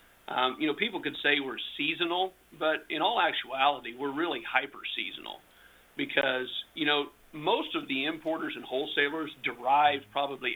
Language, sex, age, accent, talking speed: English, male, 50-69, American, 150 wpm